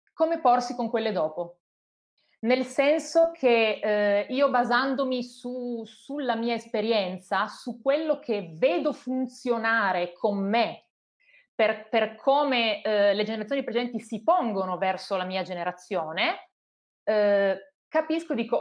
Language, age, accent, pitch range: Italian, 30-49, native, 210-255 Hz